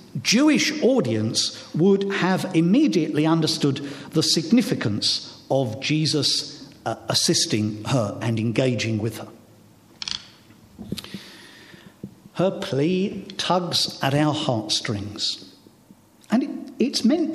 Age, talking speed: 60-79, 90 wpm